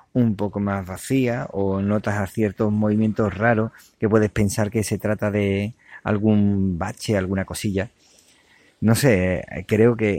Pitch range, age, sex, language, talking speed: 95-110 Hz, 30-49, male, Spanish, 145 wpm